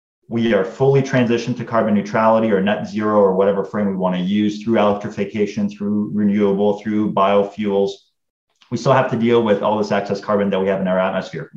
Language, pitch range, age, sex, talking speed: English, 100-115 Hz, 30-49, male, 200 wpm